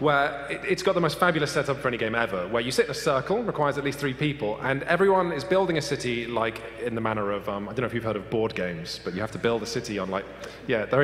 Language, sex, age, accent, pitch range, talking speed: English, male, 30-49, British, 125-170 Hz, 295 wpm